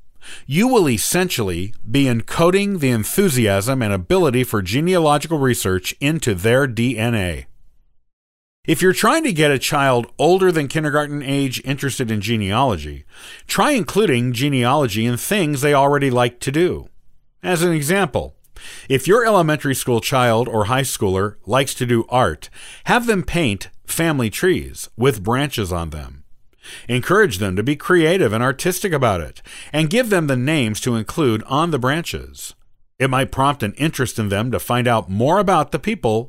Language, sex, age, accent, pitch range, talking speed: English, male, 50-69, American, 110-155 Hz, 160 wpm